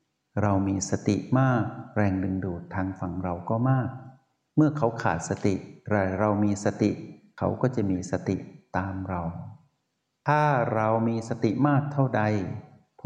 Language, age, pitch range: Thai, 60-79, 95-120 Hz